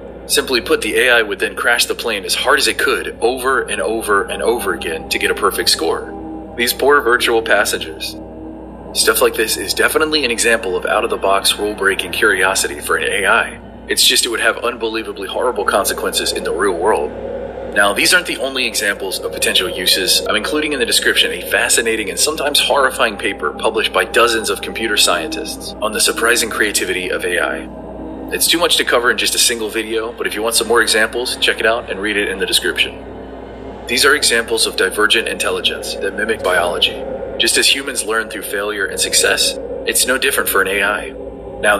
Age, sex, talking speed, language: 30-49, male, 200 wpm, English